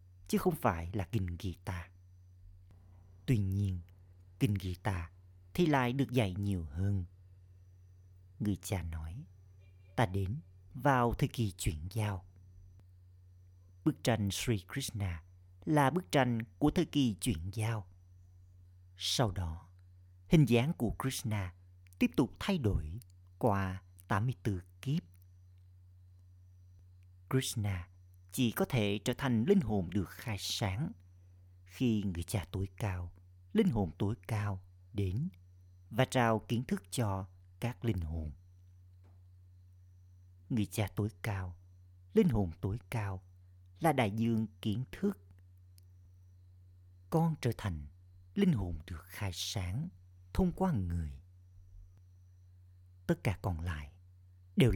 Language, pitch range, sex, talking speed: Vietnamese, 90-110 Hz, male, 120 wpm